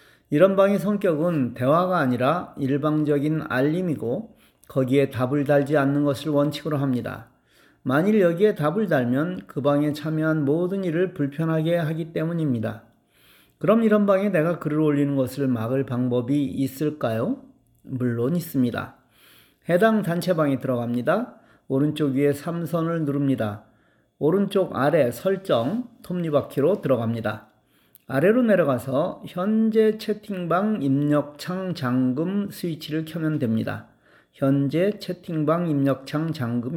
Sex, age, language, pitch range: male, 40-59, Korean, 130-180 Hz